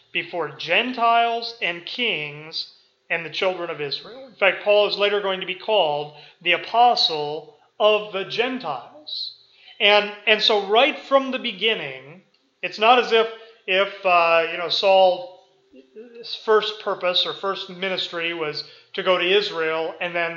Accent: American